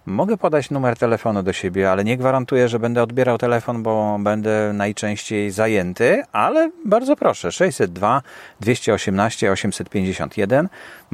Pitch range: 95-125 Hz